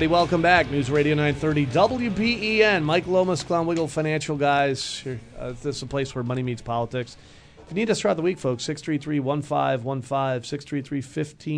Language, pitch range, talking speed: English, 115-150 Hz, 160 wpm